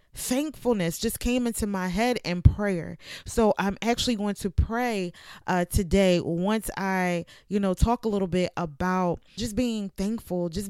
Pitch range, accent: 180-225 Hz, American